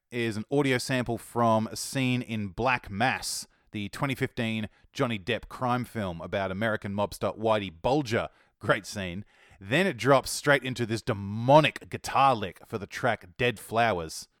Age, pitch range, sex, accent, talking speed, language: 30-49, 105-140 Hz, male, Australian, 155 wpm, English